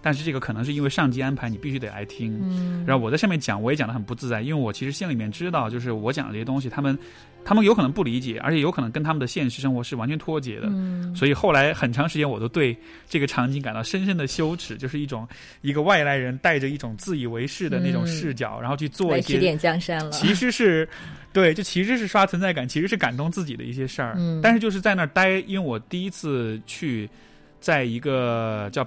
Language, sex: Chinese, male